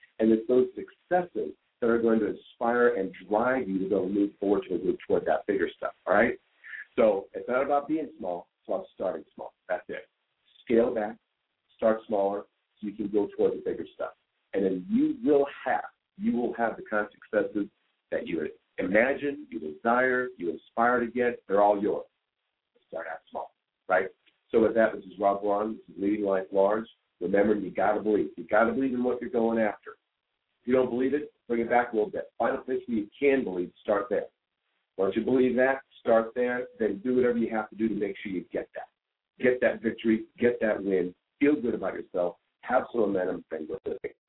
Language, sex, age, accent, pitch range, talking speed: English, male, 50-69, American, 105-140 Hz, 215 wpm